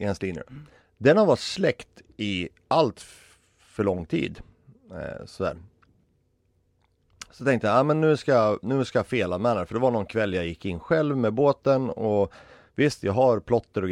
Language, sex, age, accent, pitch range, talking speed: Swedish, male, 30-49, native, 95-125 Hz, 160 wpm